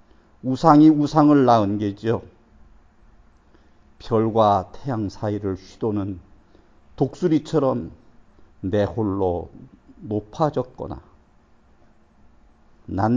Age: 50-69